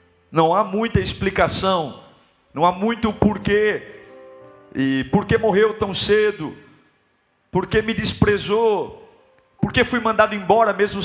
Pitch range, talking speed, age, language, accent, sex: 205-275 Hz, 120 wpm, 50-69, Portuguese, Brazilian, male